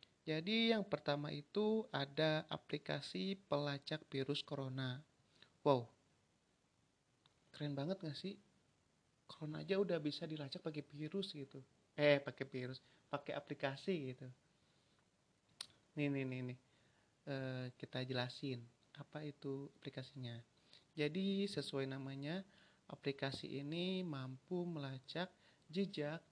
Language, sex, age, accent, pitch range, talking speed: Indonesian, male, 30-49, native, 135-165 Hz, 105 wpm